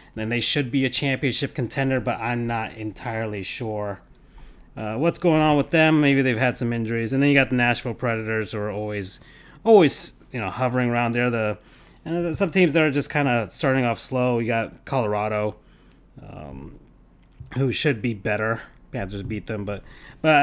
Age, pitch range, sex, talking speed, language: 30-49, 105-140 Hz, male, 190 wpm, English